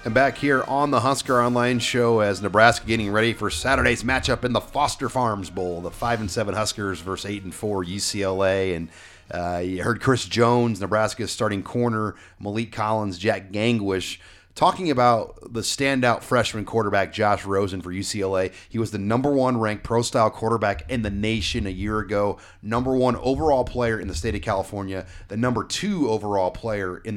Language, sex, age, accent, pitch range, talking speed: English, male, 30-49, American, 95-115 Hz, 180 wpm